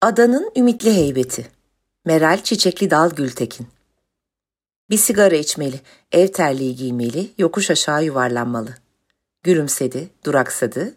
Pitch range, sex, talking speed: 130-185 Hz, female, 100 wpm